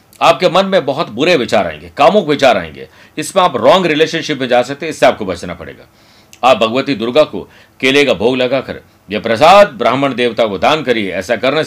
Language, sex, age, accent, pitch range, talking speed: Hindi, male, 50-69, native, 120-160 Hz, 200 wpm